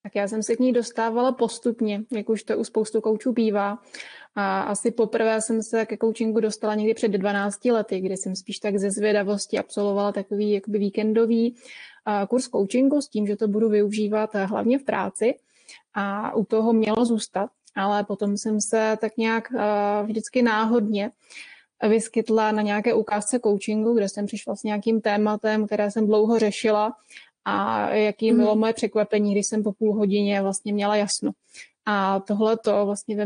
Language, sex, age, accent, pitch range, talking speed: Czech, female, 20-39, native, 205-225 Hz, 165 wpm